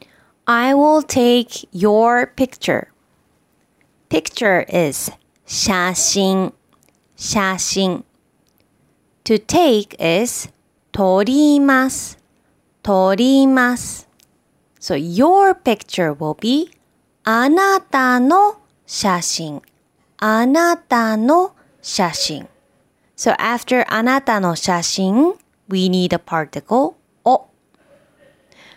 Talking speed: 60 wpm